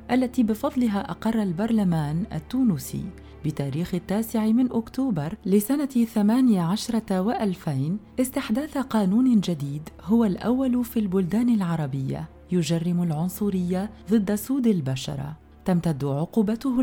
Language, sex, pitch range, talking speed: Arabic, female, 175-235 Hz, 100 wpm